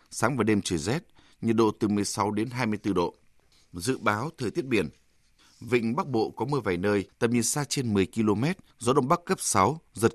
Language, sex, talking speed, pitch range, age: Vietnamese, male, 215 wpm, 100-130 Hz, 20-39